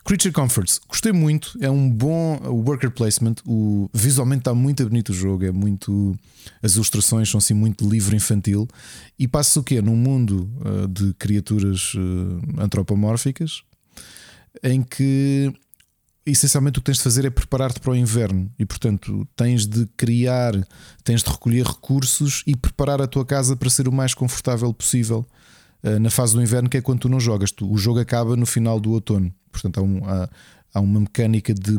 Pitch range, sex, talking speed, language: 105-130 Hz, male, 175 wpm, Portuguese